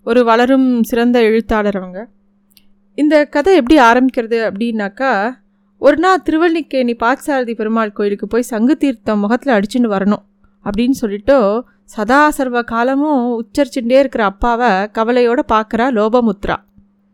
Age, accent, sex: 30-49, native, female